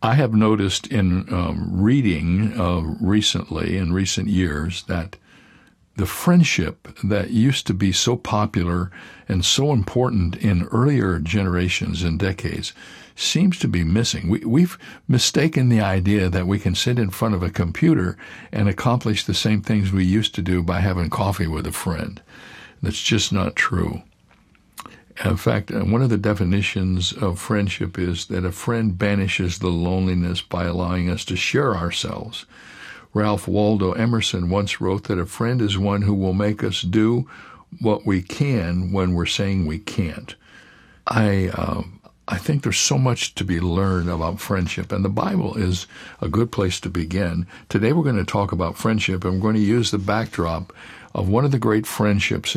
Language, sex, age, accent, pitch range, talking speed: English, male, 60-79, American, 90-110 Hz, 170 wpm